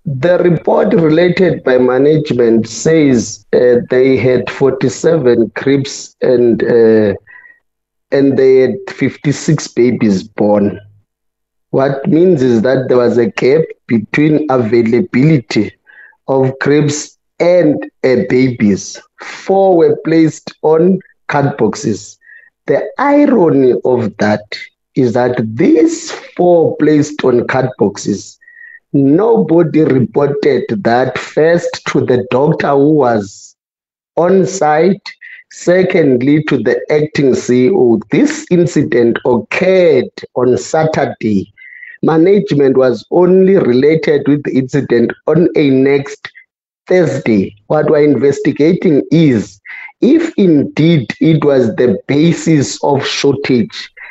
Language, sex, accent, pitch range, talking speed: English, male, South African, 125-175 Hz, 105 wpm